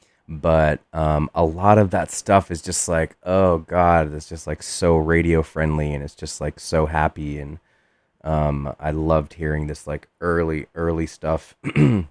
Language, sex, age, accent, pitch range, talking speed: English, male, 20-39, American, 75-85 Hz, 170 wpm